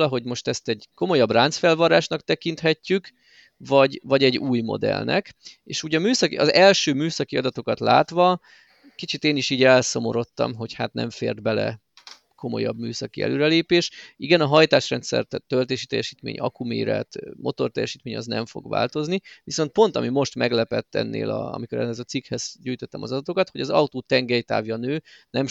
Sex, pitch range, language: male, 125-160 Hz, Hungarian